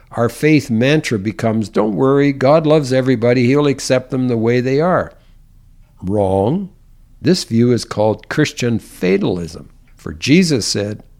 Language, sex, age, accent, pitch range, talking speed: English, male, 60-79, American, 105-135 Hz, 140 wpm